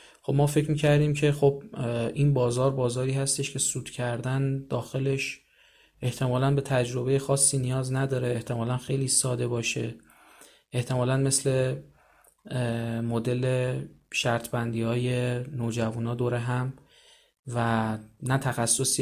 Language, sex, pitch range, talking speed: Persian, male, 115-135 Hz, 115 wpm